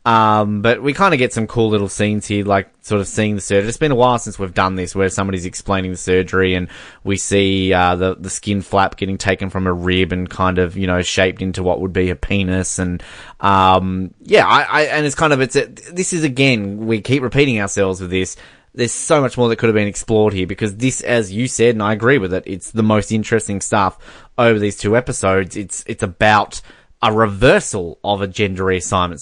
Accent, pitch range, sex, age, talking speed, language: Australian, 95-115 Hz, male, 20-39, 230 wpm, English